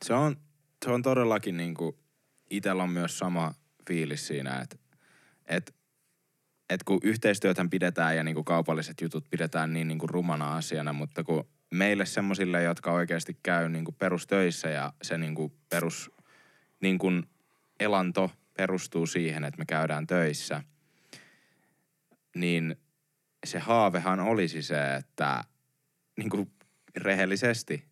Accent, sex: native, male